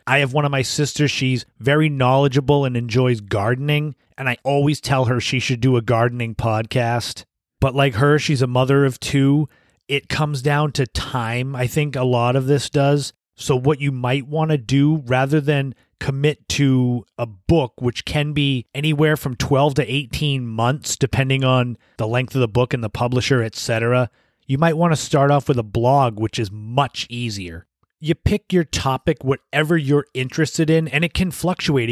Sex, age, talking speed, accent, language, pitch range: male, 30-49, 190 wpm, American, English, 120-150 Hz